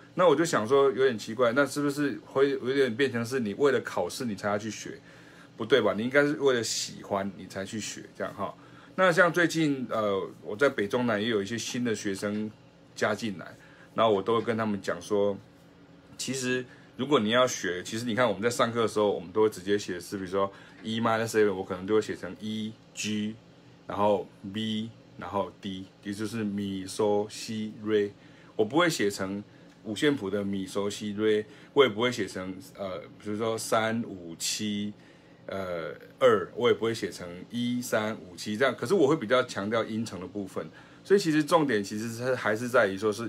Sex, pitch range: male, 100-140 Hz